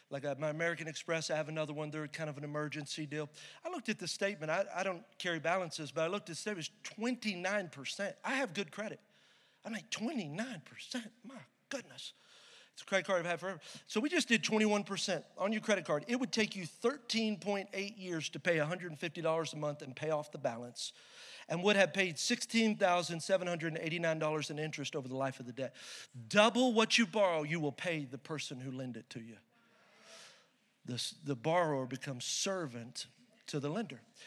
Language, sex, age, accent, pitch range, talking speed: English, male, 40-59, American, 160-220 Hz, 190 wpm